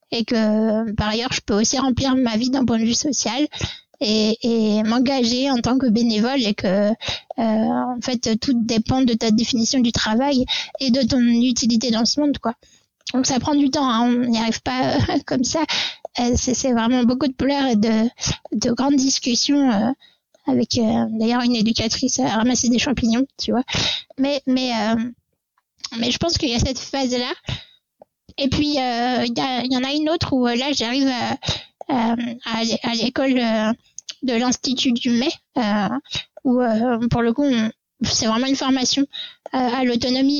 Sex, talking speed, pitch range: female, 180 wpm, 230-270 Hz